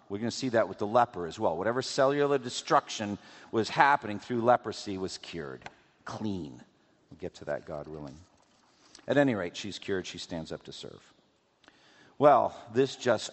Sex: male